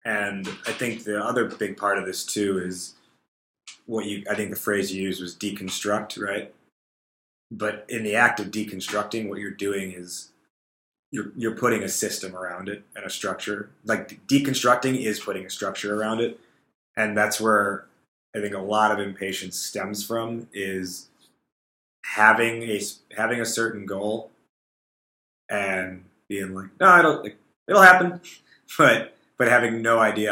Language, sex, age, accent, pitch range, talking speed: English, male, 20-39, American, 95-115 Hz, 160 wpm